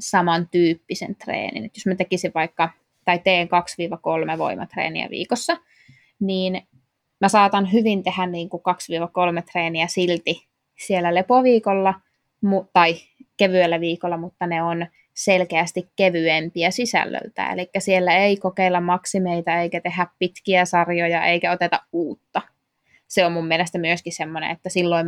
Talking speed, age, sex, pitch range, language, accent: 130 wpm, 20-39, female, 170-185 Hz, Finnish, native